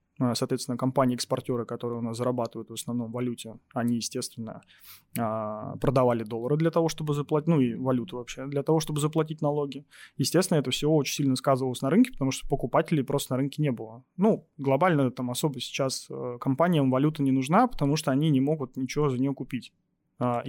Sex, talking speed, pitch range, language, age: male, 175 wpm, 125-150 Hz, Russian, 20-39